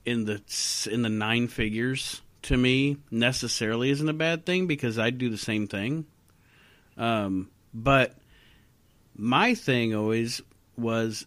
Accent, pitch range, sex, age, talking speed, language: American, 105-130 Hz, male, 40-59, 135 wpm, English